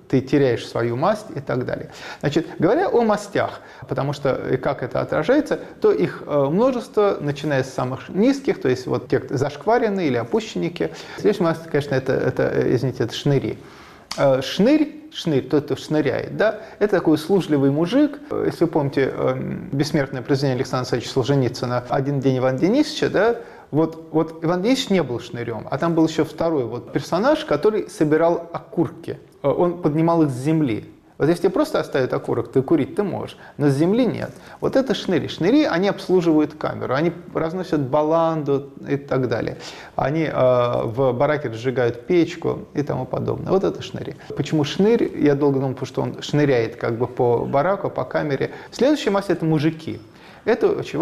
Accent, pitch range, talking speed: native, 135-180 Hz, 170 wpm